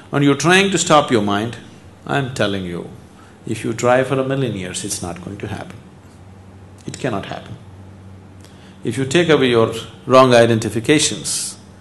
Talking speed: 165 wpm